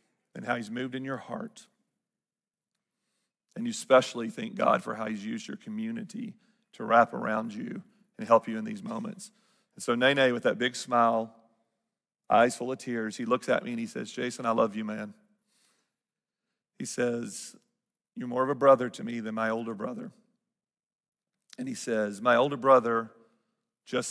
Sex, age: male, 40-59